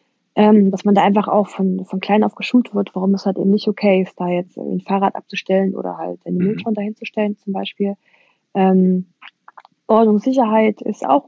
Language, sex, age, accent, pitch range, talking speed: German, female, 20-39, German, 205-250 Hz, 195 wpm